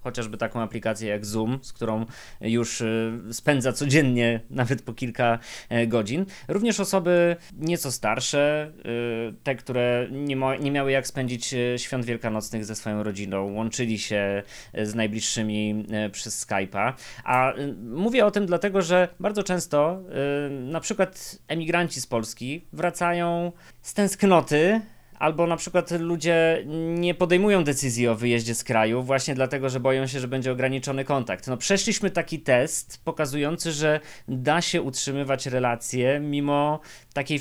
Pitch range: 120-165 Hz